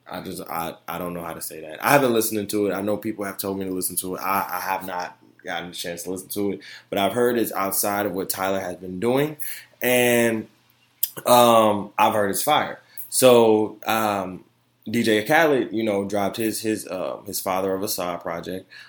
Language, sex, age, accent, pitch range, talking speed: English, male, 20-39, American, 100-125 Hz, 220 wpm